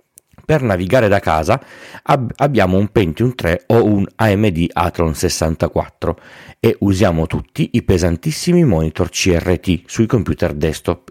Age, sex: 40-59, male